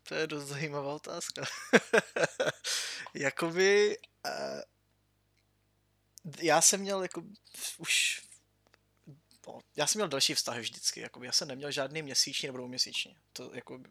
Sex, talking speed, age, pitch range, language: male, 125 wpm, 20-39, 125-155 Hz, Slovak